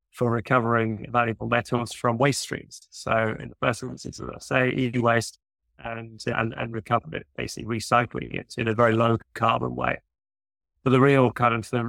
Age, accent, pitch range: 30-49, British, 115-125 Hz